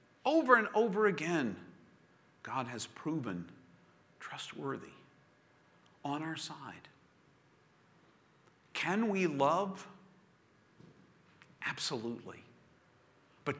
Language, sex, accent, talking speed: English, male, American, 70 wpm